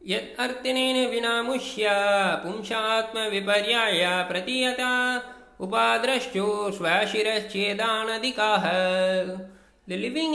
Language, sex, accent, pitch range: Tamil, male, native, 200-245 Hz